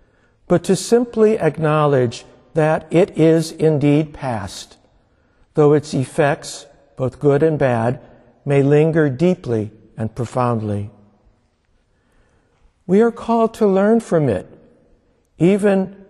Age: 60-79